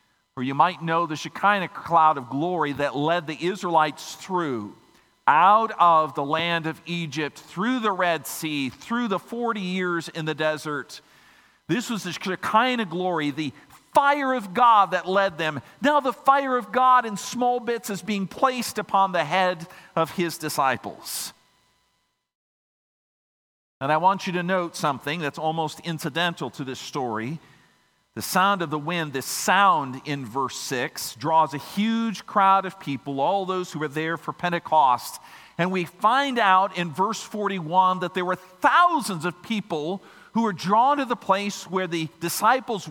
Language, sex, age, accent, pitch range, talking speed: English, male, 50-69, American, 155-205 Hz, 165 wpm